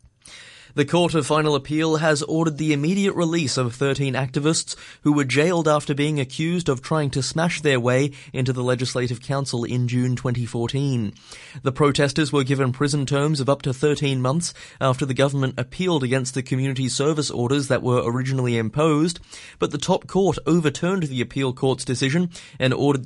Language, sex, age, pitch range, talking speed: English, male, 20-39, 130-150 Hz, 175 wpm